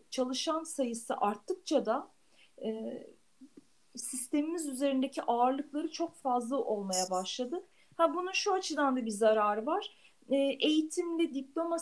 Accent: native